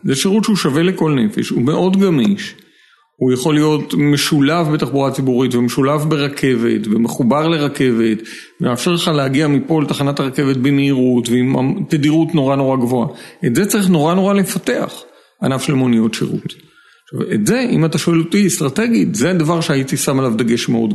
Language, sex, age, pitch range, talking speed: Hebrew, male, 50-69, 135-190 Hz, 160 wpm